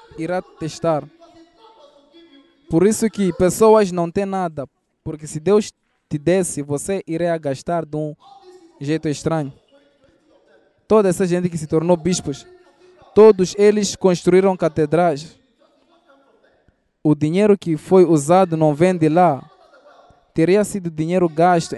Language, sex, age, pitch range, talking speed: Portuguese, male, 20-39, 150-190 Hz, 125 wpm